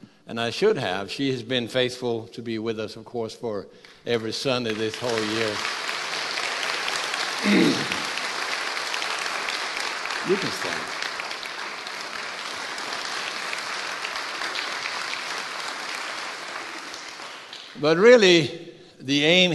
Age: 60-79